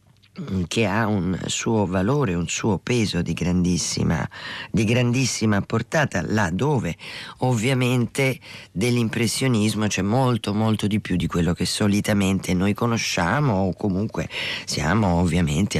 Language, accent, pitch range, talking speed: Italian, native, 85-105 Hz, 120 wpm